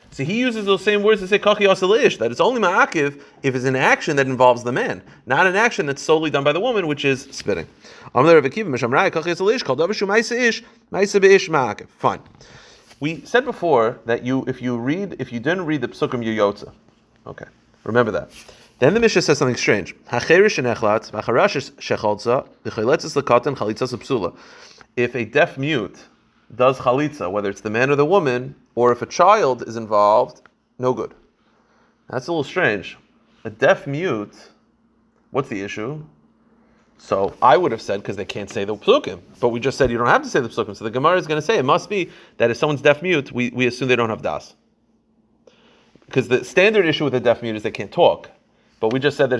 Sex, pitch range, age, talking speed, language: male, 120-180 Hz, 30-49, 180 wpm, English